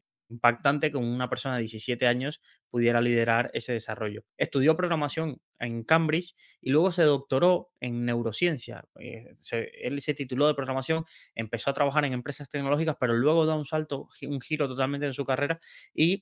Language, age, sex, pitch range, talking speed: Spanish, 20-39, male, 120-150 Hz, 165 wpm